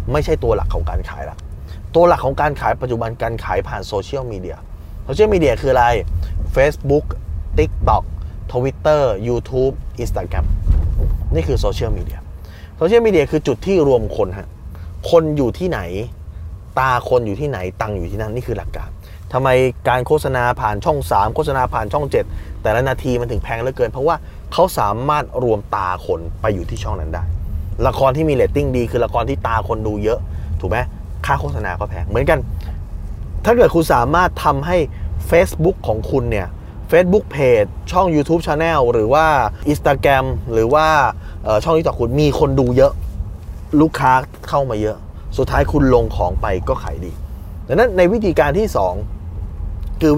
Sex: male